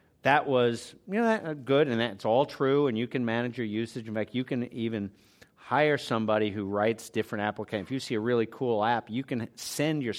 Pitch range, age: 115-155 Hz, 50-69